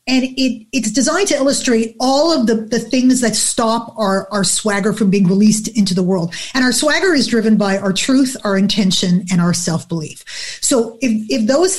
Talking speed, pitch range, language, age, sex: 200 wpm, 205-265 Hz, English, 30-49, female